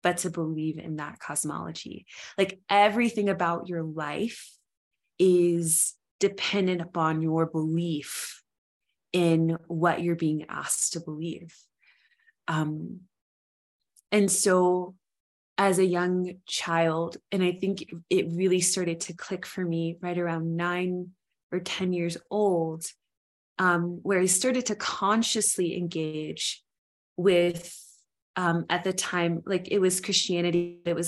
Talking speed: 125 wpm